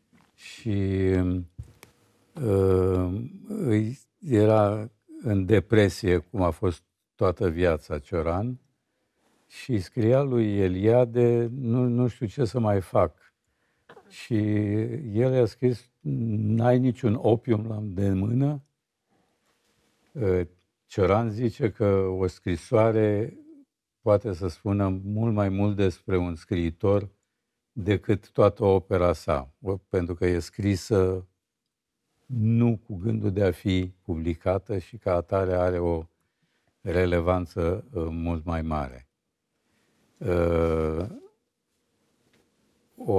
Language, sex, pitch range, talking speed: Romanian, male, 90-115 Hz, 95 wpm